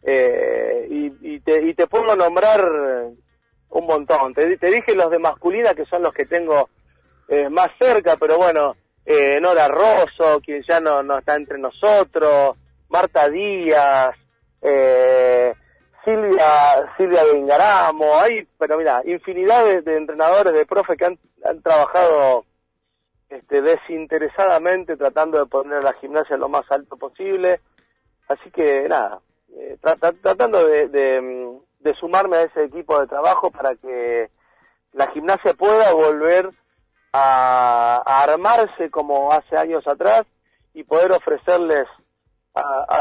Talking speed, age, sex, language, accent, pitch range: 135 wpm, 40-59, male, Spanish, Argentinian, 140-190 Hz